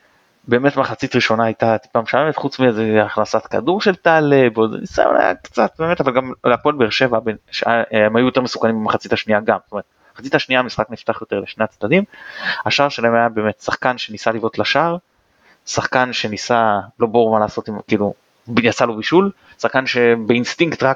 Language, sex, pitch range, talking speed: Hebrew, male, 110-130 Hz, 170 wpm